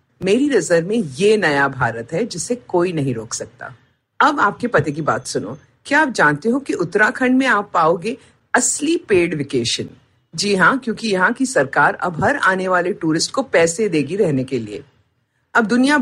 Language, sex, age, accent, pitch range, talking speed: Hindi, female, 50-69, native, 145-245 Hz, 180 wpm